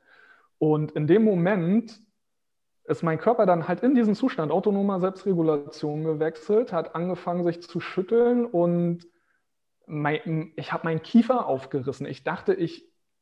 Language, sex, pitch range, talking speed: German, male, 155-195 Hz, 130 wpm